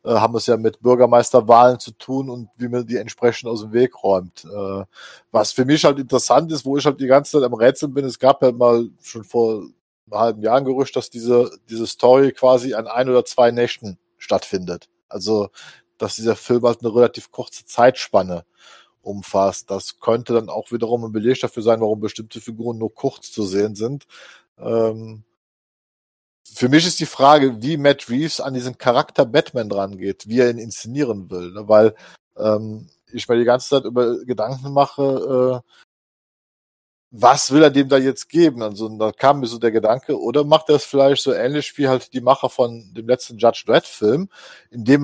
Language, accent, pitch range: German, German, 110-135 Hz